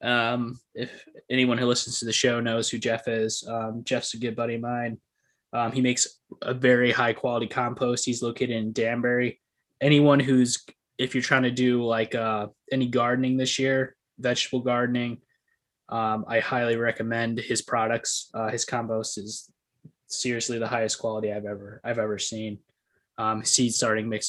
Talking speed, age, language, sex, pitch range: 170 wpm, 20-39, English, male, 110-125 Hz